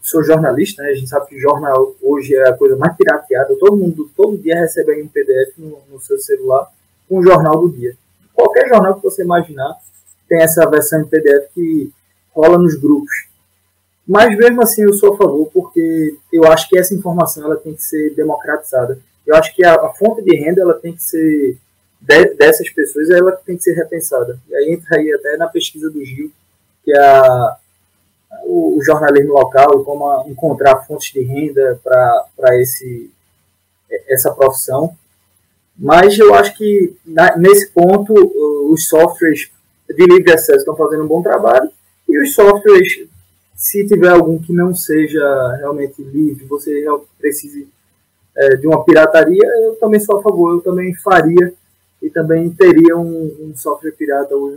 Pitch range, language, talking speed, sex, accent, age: 140-200 Hz, Portuguese, 170 wpm, male, Brazilian, 20-39